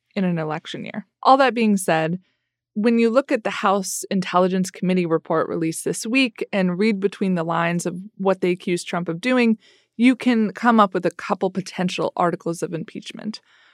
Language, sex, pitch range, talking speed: English, female, 180-215 Hz, 190 wpm